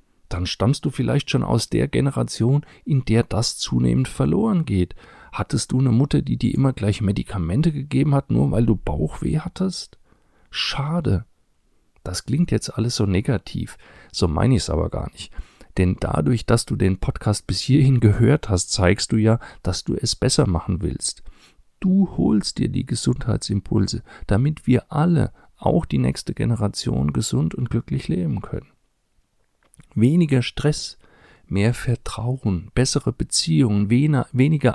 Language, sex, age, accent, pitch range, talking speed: German, male, 40-59, German, 105-140 Hz, 150 wpm